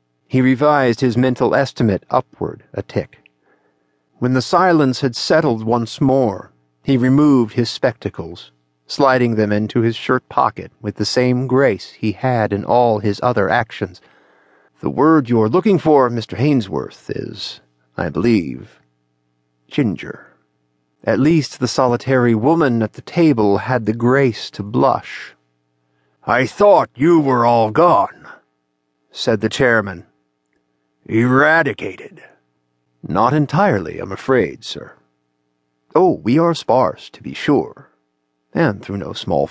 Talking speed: 130 wpm